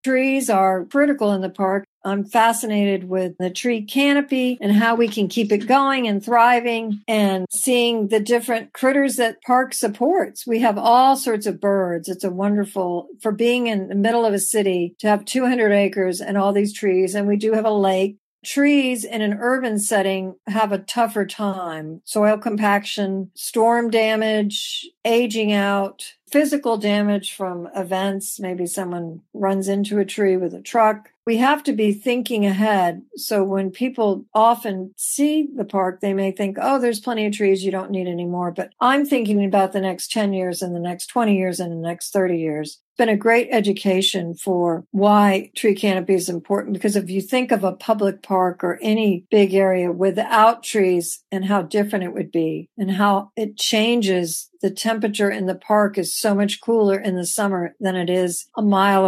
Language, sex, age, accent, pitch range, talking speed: English, female, 50-69, American, 190-225 Hz, 185 wpm